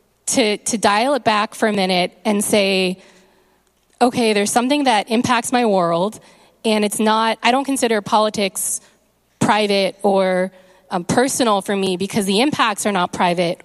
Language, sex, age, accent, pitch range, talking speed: English, female, 20-39, American, 190-225 Hz, 160 wpm